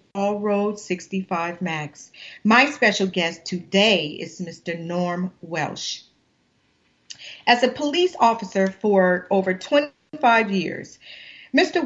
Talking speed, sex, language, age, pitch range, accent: 105 wpm, female, English, 40-59, 185-245 Hz, American